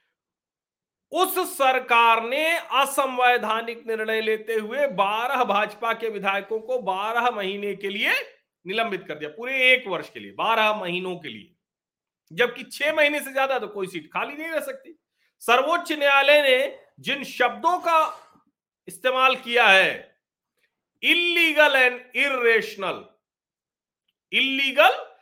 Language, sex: Hindi, male